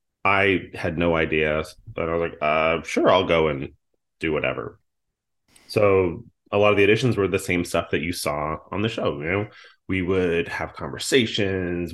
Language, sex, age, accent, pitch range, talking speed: English, male, 30-49, American, 80-105 Hz, 185 wpm